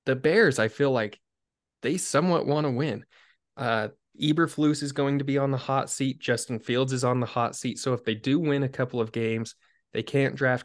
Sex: male